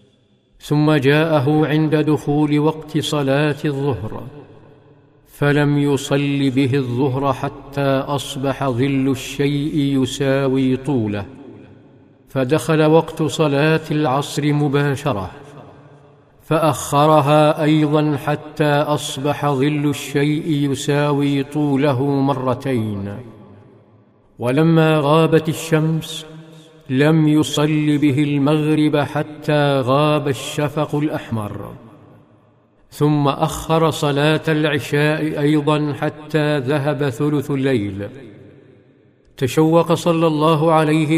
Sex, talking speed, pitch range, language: male, 80 wpm, 135-155 Hz, Arabic